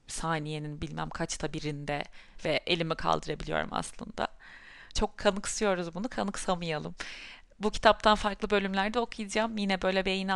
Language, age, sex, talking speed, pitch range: Turkish, 30-49, female, 115 wpm, 175-225 Hz